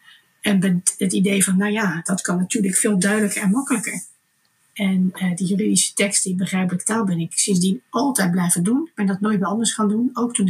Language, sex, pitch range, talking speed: Dutch, female, 180-210 Hz, 210 wpm